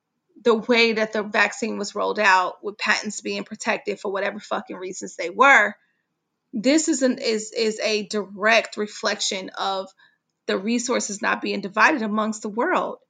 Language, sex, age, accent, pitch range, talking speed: English, female, 30-49, American, 210-275 Hz, 160 wpm